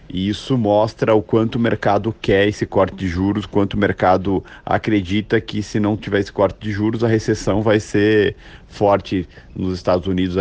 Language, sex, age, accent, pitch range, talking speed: Portuguese, male, 40-59, Brazilian, 90-105 Hz, 185 wpm